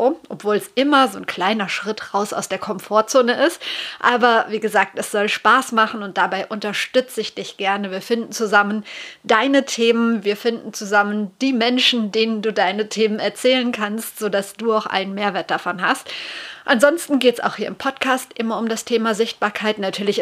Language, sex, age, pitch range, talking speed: German, female, 30-49, 205-245 Hz, 180 wpm